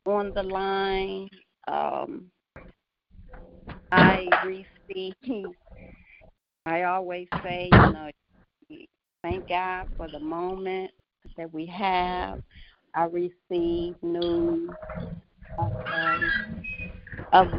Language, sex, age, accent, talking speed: English, female, 40-59, American, 85 wpm